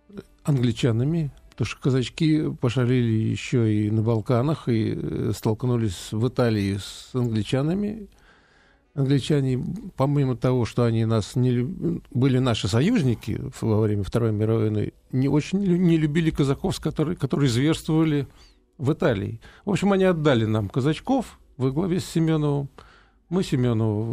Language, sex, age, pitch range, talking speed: Russian, male, 50-69, 120-160 Hz, 130 wpm